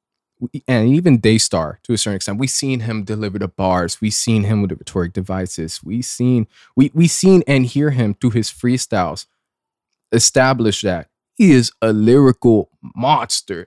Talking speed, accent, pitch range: 170 wpm, American, 105-130 Hz